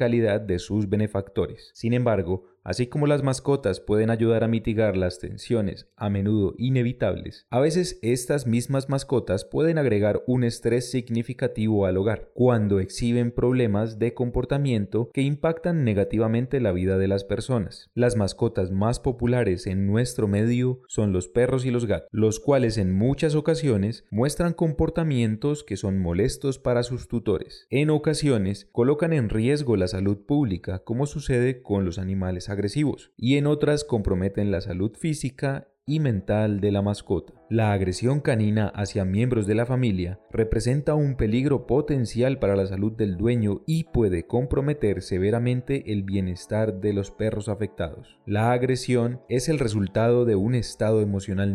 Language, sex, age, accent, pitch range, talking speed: Spanish, male, 30-49, Colombian, 100-130 Hz, 155 wpm